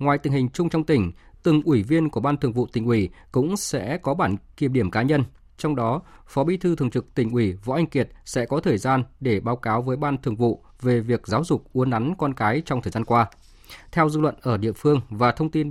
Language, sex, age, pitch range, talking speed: Vietnamese, male, 20-39, 115-150 Hz, 255 wpm